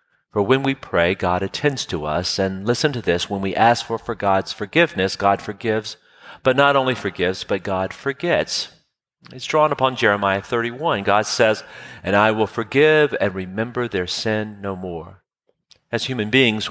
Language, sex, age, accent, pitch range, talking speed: English, male, 40-59, American, 95-125 Hz, 170 wpm